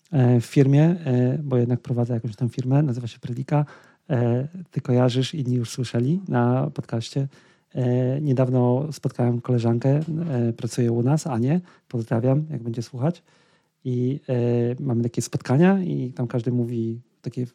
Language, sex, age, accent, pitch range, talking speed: Polish, male, 40-59, native, 125-145 Hz, 130 wpm